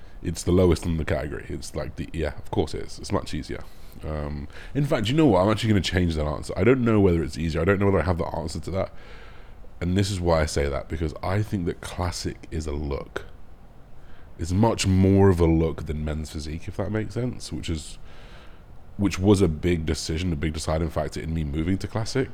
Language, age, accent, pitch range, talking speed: English, 30-49, British, 80-95 Hz, 240 wpm